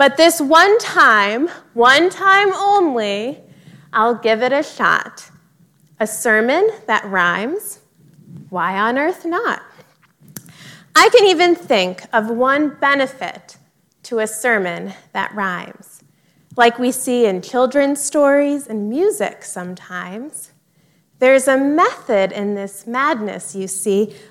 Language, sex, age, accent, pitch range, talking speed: English, female, 20-39, American, 190-285 Hz, 120 wpm